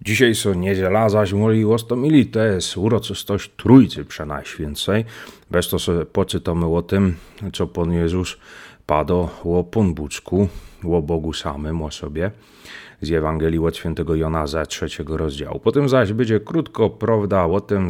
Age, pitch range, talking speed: 30-49, 80-100 Hz, 145 wpm